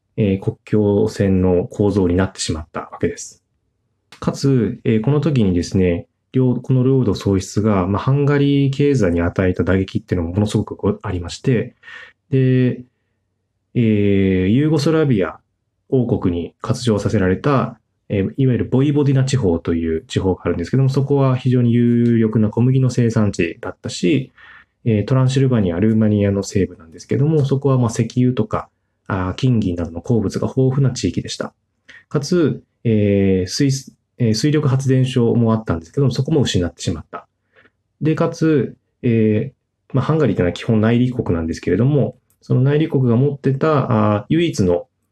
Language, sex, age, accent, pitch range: Japanese, male, 20-39, native, 100-130 Hz